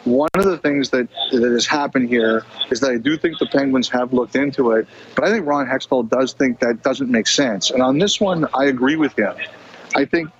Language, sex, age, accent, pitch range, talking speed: English, male, 40-59, American, 120-150 Hz, 235 wpm